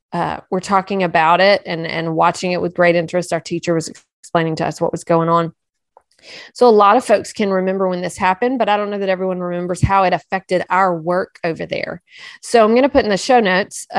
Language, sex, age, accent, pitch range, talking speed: English, female, 30-49, American, 170-195 Hz, 235 wpm